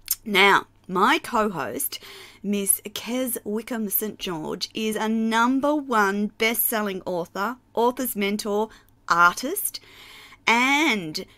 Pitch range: 180-230 Hz